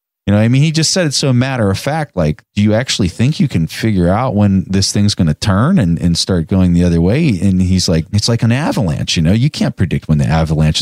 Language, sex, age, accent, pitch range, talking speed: English, male, 40-59, American, 80-120 Hz, 275 wpm